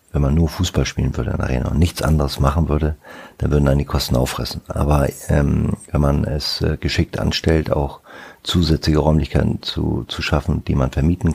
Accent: German